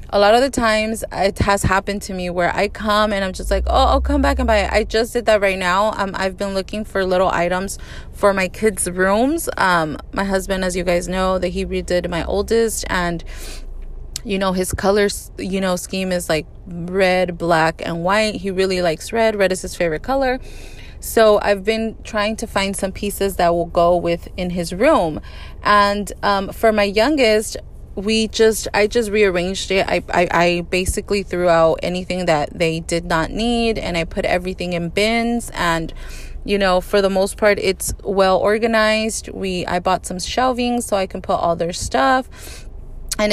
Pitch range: 180-215 Hz